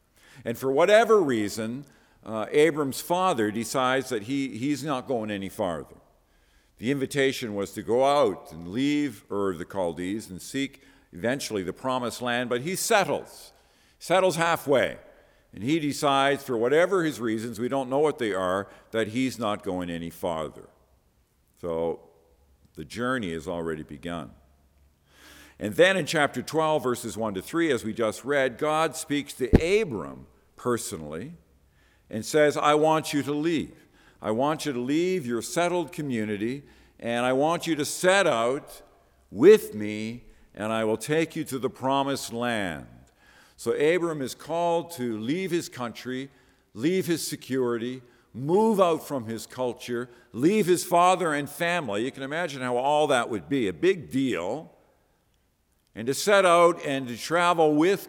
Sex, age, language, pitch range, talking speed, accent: male, 50-69, English, 105-150 Hz, 160 wpm, American